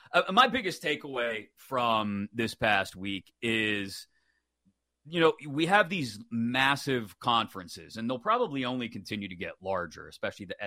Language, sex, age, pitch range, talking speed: English, male, 30-49, 110-145 Hz, 140 wpm